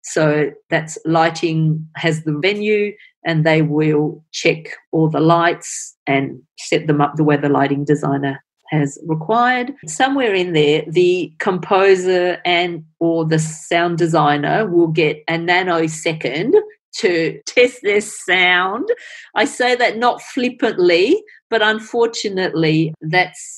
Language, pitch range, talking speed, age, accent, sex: English, 155-195 Hz, 125 wpm, 40-59, Australian, female